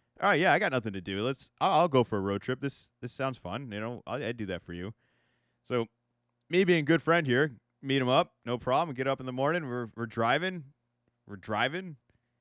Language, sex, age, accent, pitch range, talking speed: English, male, 30-49, American, 115-160 Hz, 240 wpm